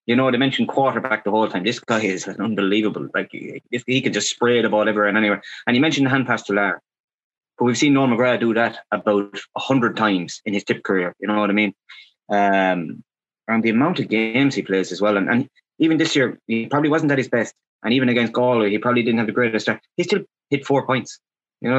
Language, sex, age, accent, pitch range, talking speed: English, male, 20-39, Irish, 100-125 Hz, 240 wpm